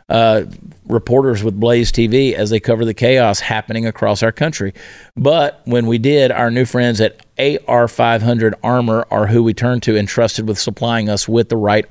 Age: 50-69